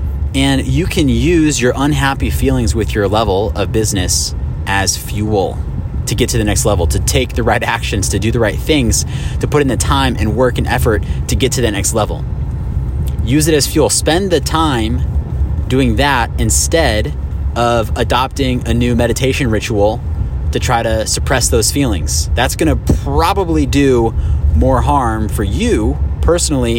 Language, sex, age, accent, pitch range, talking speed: English, male, 30-49, American, 75-120 Hz, 170 wpm